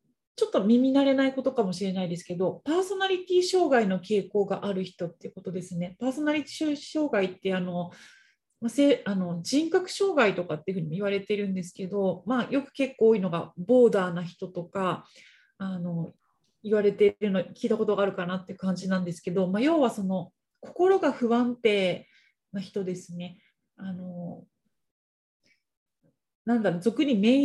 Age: 30-49